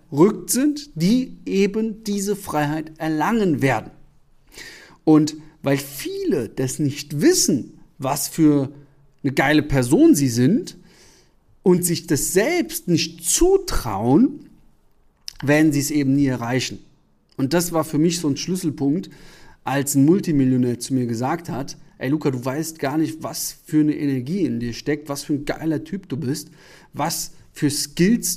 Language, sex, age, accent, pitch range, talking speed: German, male, 40-59, German, 135-175 Hz, 150 wpm